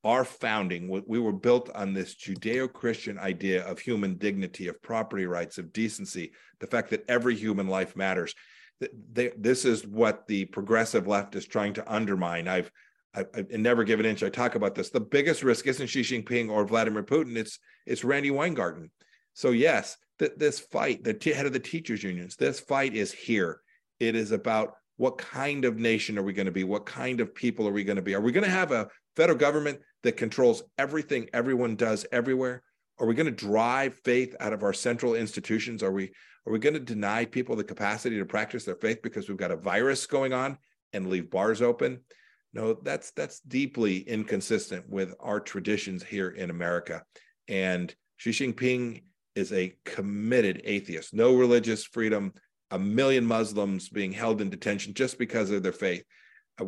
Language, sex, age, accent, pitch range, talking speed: English, male, 50-69, American, 100-125 Hz, 185 wpm